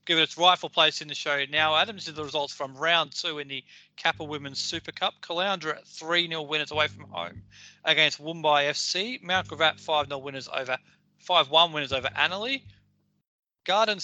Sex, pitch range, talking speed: male, 140-175 Hz, 190 wpm